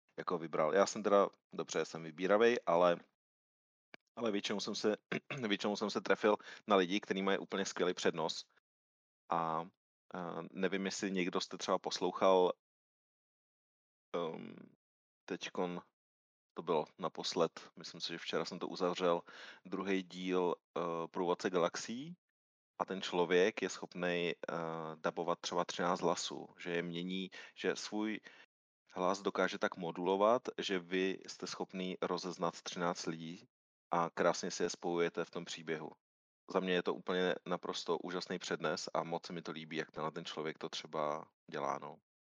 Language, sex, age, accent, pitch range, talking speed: Czech, male, 30-49, native, 85-95 Hz, 145 wpm